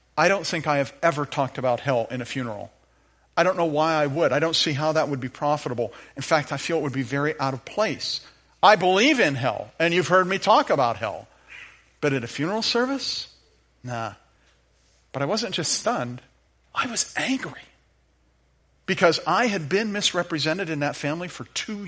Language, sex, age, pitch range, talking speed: English, male, 50-69, 130-185 Hz, 195 wpm